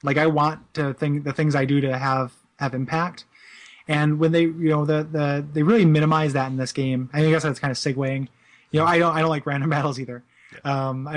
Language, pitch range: English, 130-160 Hz